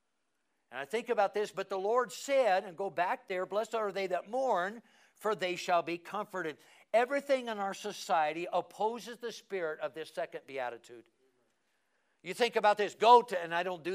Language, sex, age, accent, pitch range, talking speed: English, male, 60-79, American, 170-210 Hz, 190 wpm